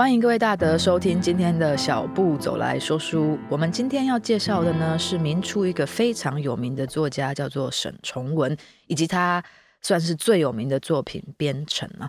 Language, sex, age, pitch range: Chinese, female, 20-39, 140-210 Hz